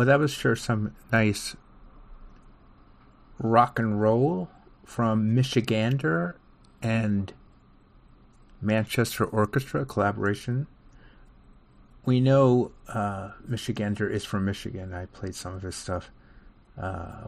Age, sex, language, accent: 50-69, male, English, American